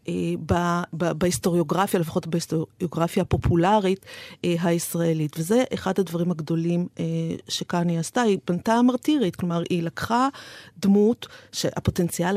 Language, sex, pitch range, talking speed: Hebrew, female, 180-230 Hz, 90 wpm